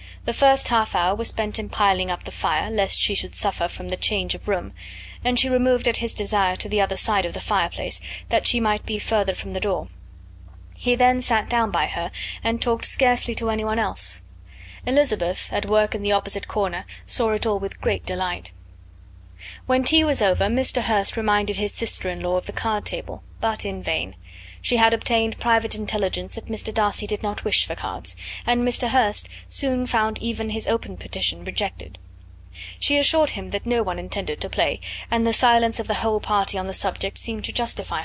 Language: English